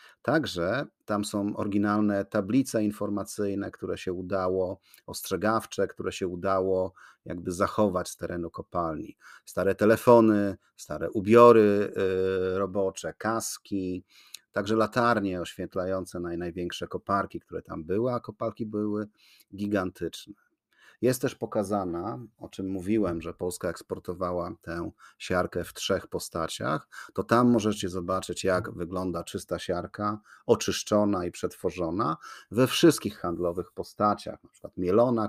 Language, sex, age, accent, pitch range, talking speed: Polish, male, 40-59, native, 95-110 Hz, 115 wpm